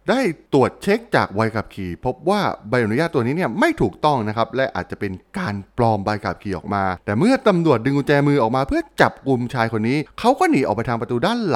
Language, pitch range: Thai, 100-155 Hz